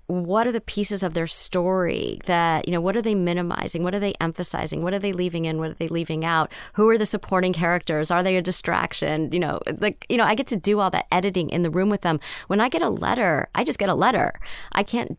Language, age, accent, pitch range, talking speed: English, 30-49, American, 165-210 Hz, 260 wpm